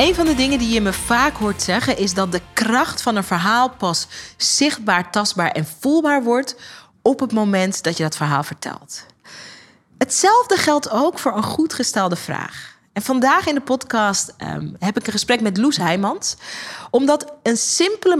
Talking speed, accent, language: 180 wpm, Dutch, Dutch